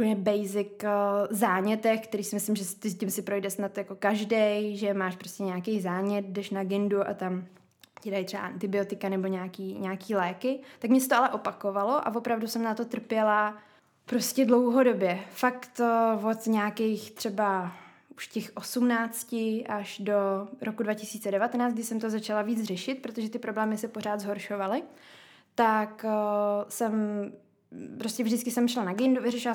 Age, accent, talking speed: 20-39, native, 160 wpm